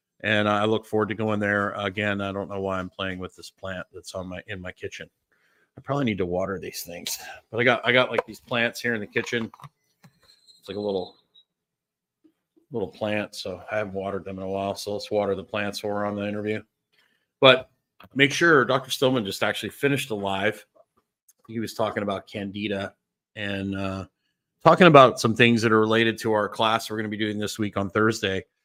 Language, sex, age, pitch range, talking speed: English, male, 40-59, 100-115 Hz, 210 wpm